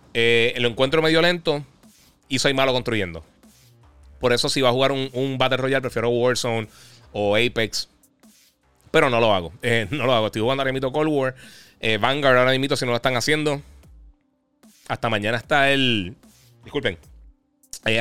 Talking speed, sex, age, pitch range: 170 wpm, male, 30-49, 110-135 Hz